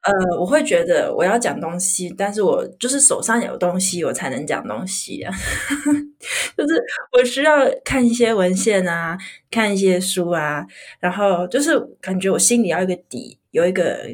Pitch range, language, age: 175-235 Hz, Chinese, 20-39